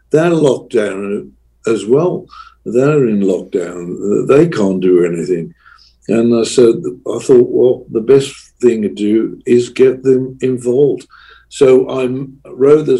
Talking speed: 145 wpm